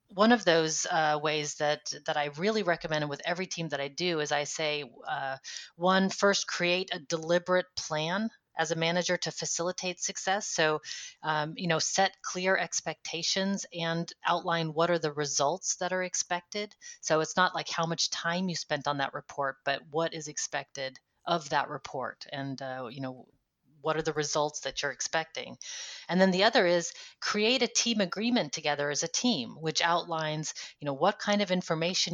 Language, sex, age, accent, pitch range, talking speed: English, female, 30-49, American, 150-180 Hz, 185 wpm